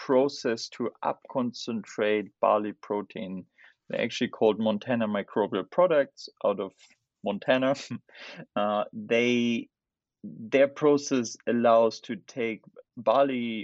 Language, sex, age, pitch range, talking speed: English, male, 30-49, 100-130 Hz, 100 wpm